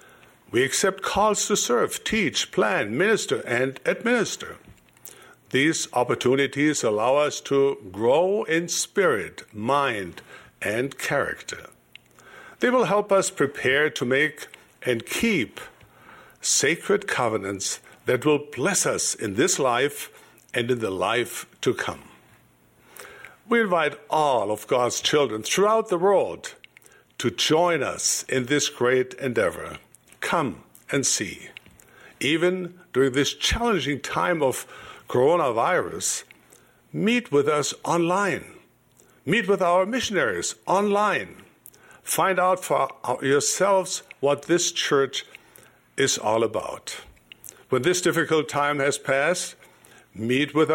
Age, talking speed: 60-79, 115 wpm